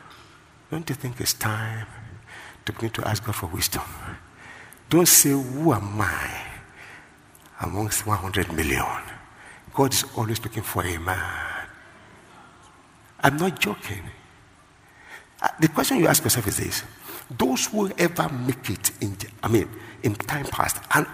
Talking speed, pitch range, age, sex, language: 140 wpm, 100-140 Hz, 50-69, male, English